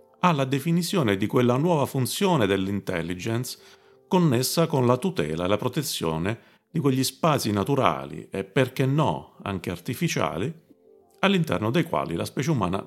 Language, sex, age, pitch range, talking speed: Italian, male, 40-59, 100-140 Hz, 140 wpm